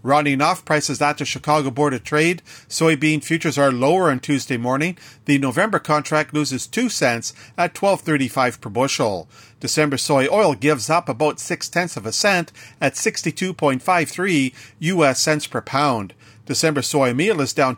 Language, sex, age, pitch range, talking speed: English, male, 40-59, 130-165 Hz, 160 wpm